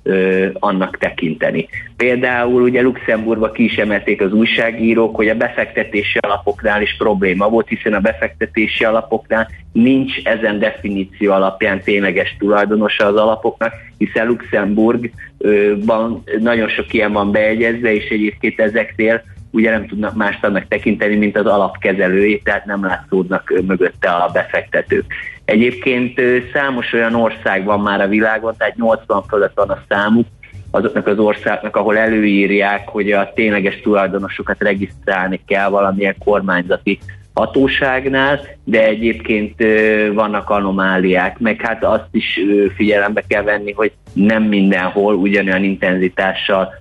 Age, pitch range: 30-49, 100-115 Hz